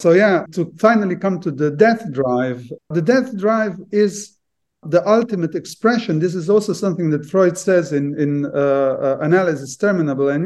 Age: 50-69